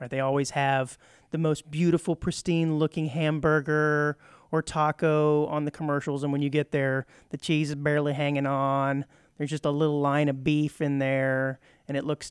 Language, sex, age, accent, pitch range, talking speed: English, male, 30-49, American, 140-175 Hz, 175 wpm